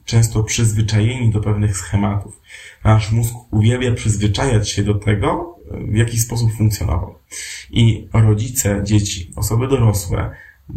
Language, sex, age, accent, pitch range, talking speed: Polish, male, 20-39, native, 105-115 Hz, 115 wpm